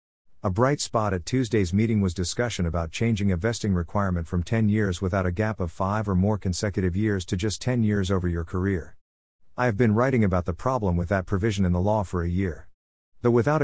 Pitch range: 90-115 Hz